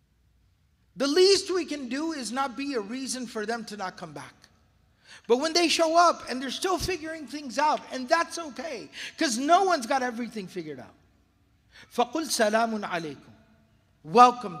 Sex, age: male, 50-69